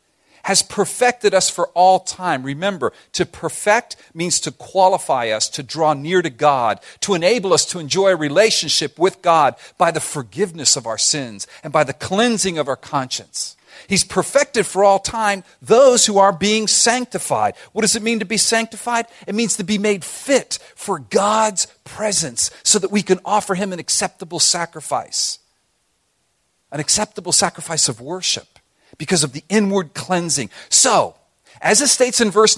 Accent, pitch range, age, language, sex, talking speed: American, 145-205 Hz, 50-69, English, male, 170 wpm